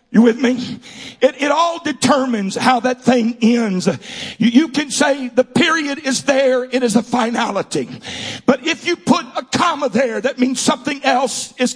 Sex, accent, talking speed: male, American, 180 wpm